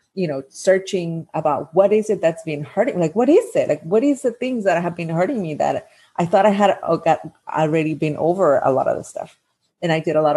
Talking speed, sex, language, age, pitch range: 250 wpm, female, English, 30-49, 150-185 Hz